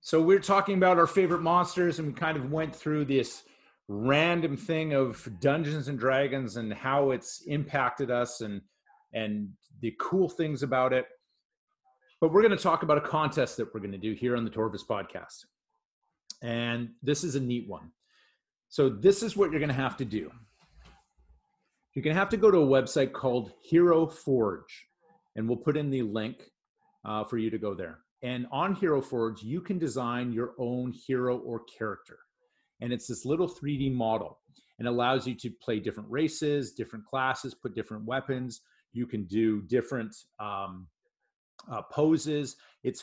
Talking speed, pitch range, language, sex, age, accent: 175 wpm, 120-155 Hz, English, male, 40-59, American